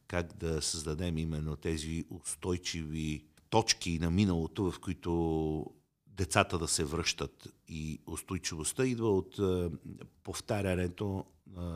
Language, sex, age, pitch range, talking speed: Bulgarian, male, 50-69, 80-95 Hz, 100 wpm